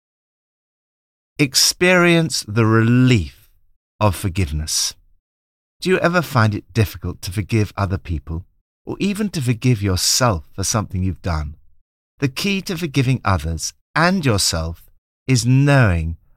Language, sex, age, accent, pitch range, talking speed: English, male, 50-69, British, 85-135 Hz, 120 wpm